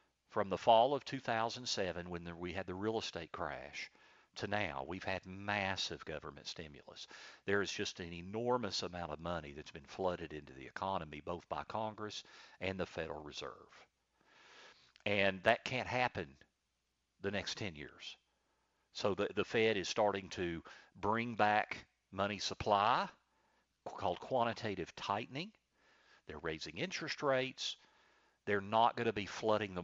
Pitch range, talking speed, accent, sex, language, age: 90-110 Hz, 145 wpm, American, male, English, 50-69